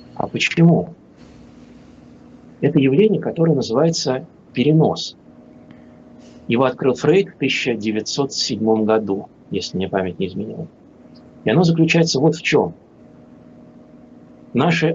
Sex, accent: male, native